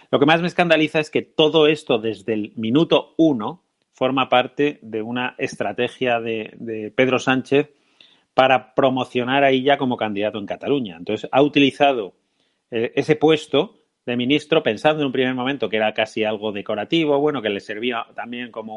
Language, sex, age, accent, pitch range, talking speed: Spanish, male, 30-49, Spanish, 110-140 Hz, 175 wpm